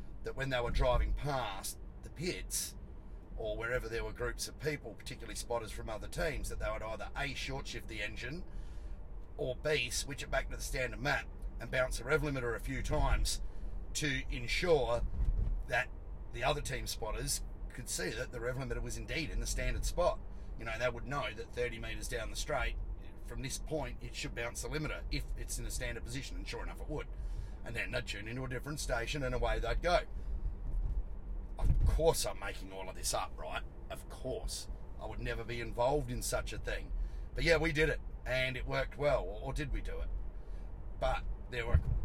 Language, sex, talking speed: English, male, 205 wpm